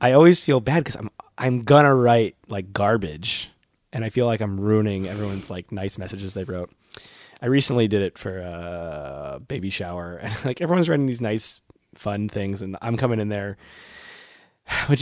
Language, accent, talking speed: English, American, 185 wpm